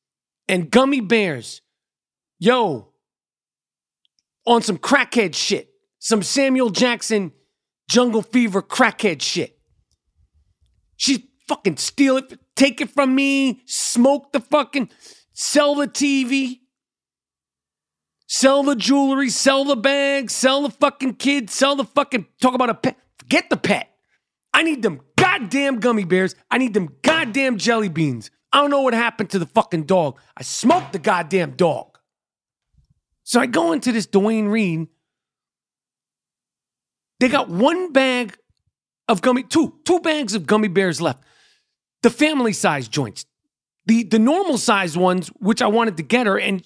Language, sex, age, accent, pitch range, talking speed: English, male, 40-59, American, 195-275 Hz, 145 wpm